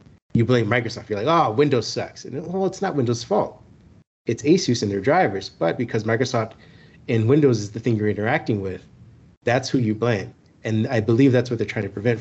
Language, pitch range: English, 110-130 Hz